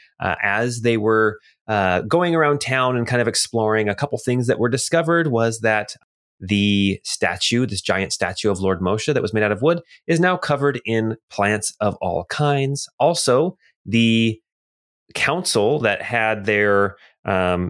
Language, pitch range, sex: English, 100-135 Hz, male